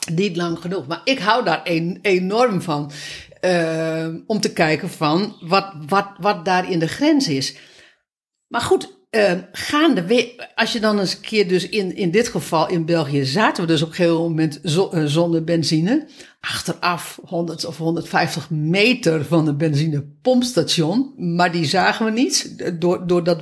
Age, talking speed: 60-79, 160 wpm